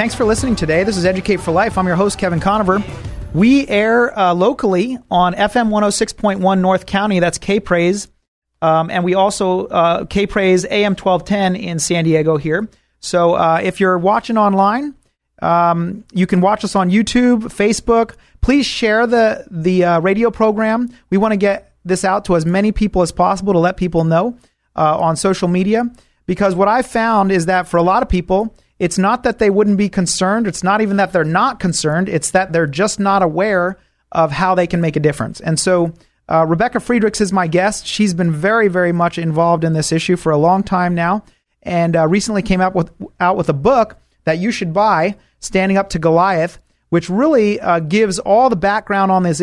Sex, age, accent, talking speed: male, 30-49, American, 200 wpm